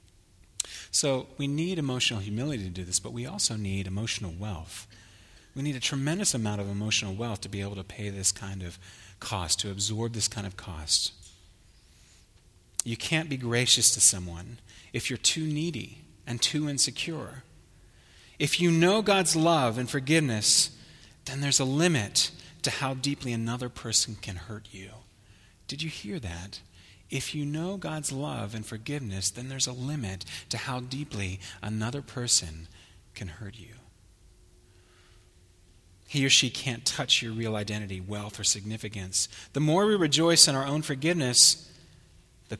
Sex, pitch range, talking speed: male, 95-130 Hz, 160 wpm